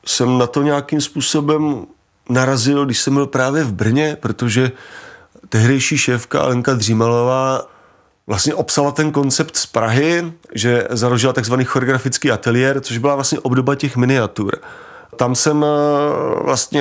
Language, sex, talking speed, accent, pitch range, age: Czech, male, 130 wpm, native, 115-135 Hz, 30-49